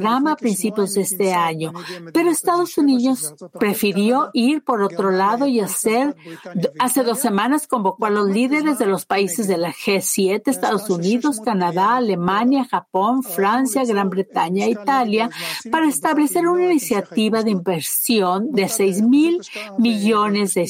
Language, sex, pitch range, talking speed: English, female, 195-265 Hz, 140 wpm